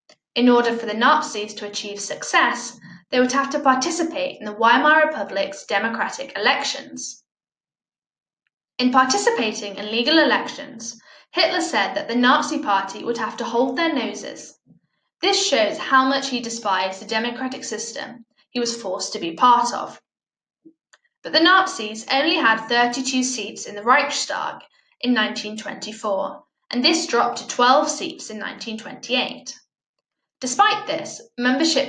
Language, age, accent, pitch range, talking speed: English, 10-29, British, 220-285 Hz, 140 wpm